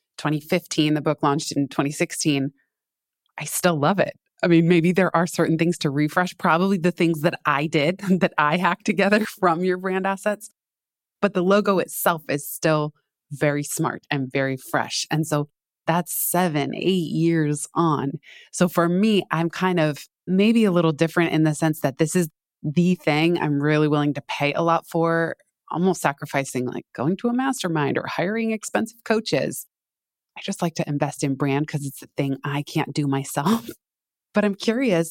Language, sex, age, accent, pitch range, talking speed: English, female, 20-39, American, 150-185 Hz, 180 wpm